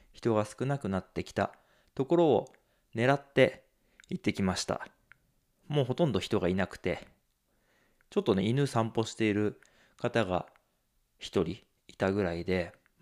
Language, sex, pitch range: Japanese, male, 95-140 Hz